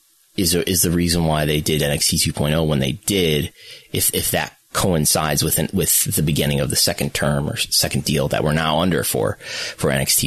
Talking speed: 200 wpm